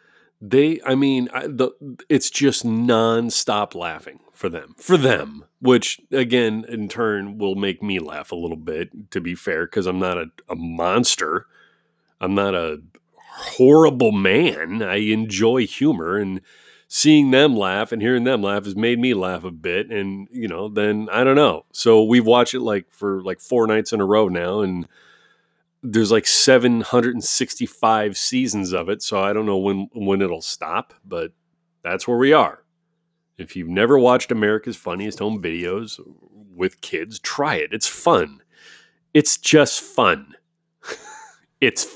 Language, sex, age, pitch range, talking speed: English, male, 30-49, 100-150 Hz, 160 wpm